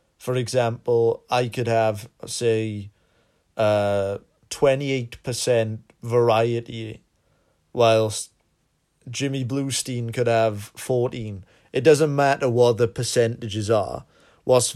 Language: English